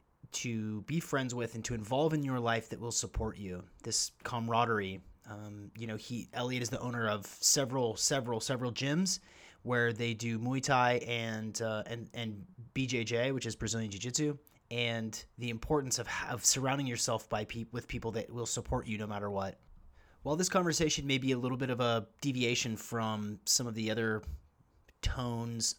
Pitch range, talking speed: 110-125 Hz, 180 wpm